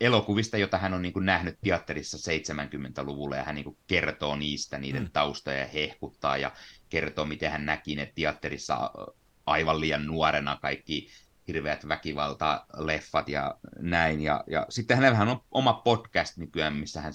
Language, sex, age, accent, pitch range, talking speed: Finnish, male, 30-49, native, 75-100 Hz, 145 wpm